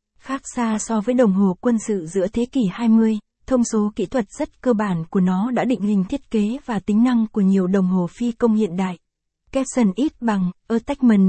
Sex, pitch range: female, 205-240 Hz